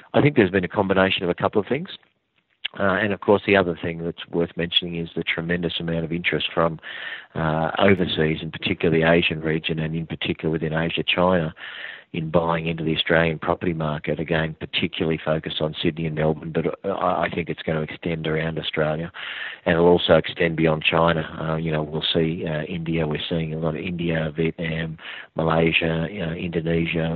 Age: 40-59